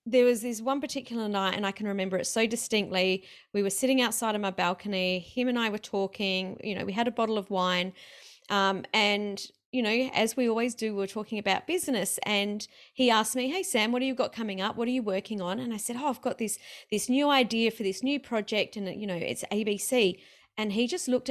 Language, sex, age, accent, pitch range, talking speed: English, female, 30-49, Australian, 200-250 Hz, 240 wpm